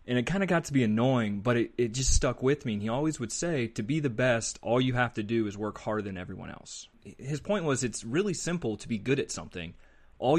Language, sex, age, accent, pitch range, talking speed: English, male, 30-49, American, 110-135 Hz, 270 wpm